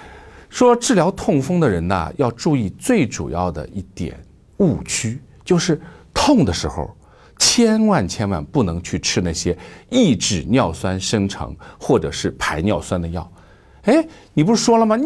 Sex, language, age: male, Chinese, 50-69